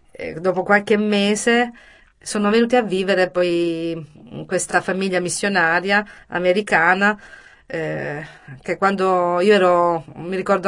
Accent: native